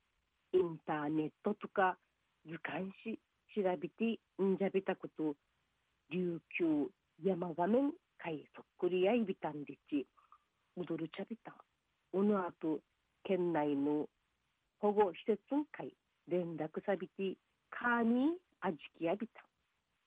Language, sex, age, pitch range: Japanese, female, 50-69, 160-215 Hz